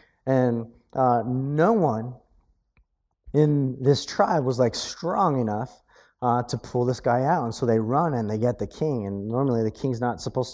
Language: English